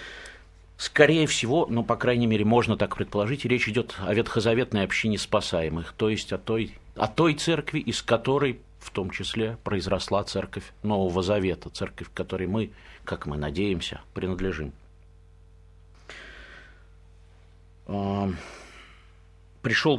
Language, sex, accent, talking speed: Russian, male, native, 115 wpm